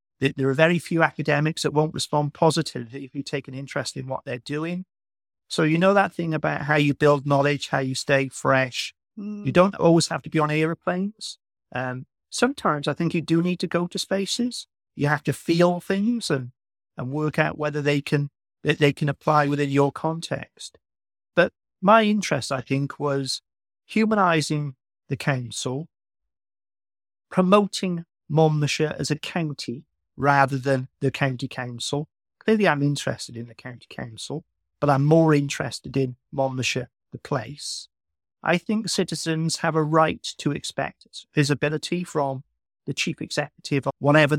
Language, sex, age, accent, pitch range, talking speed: English, male, 30-49, British, 135-165 Hz, 160 wpm